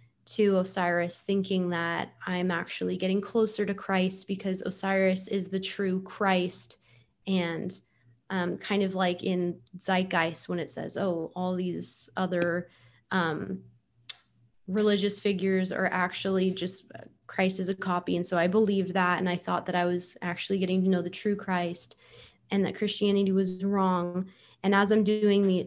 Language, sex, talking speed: English, female, 155 wpm